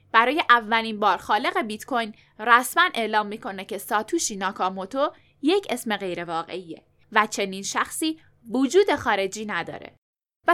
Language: Persian